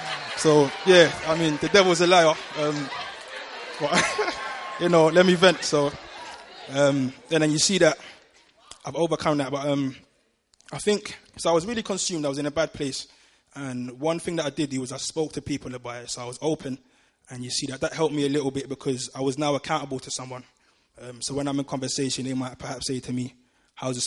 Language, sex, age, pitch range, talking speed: English, male, 20-39, 130-150 Hz, 220 wpm